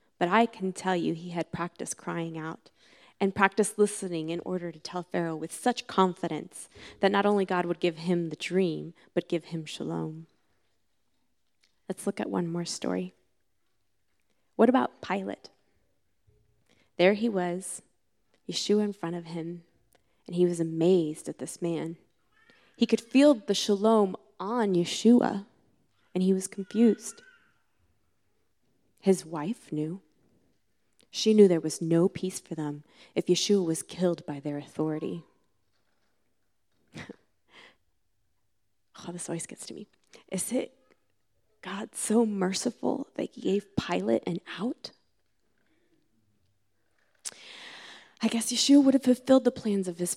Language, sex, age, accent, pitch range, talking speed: English, female, 20-39, American, 160-210 Hz, 135 wpm